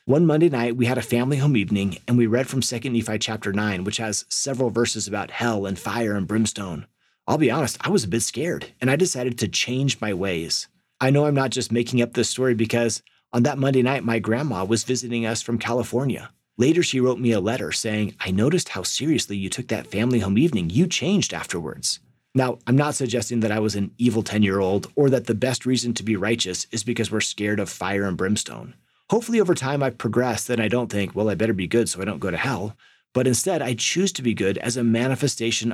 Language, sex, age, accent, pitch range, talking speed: English, male, 30-49, American, 110-135 Hz, 235 wpm